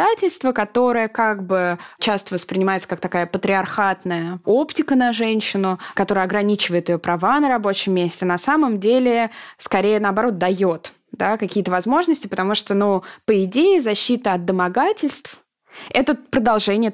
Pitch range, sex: 180-235 Hz, female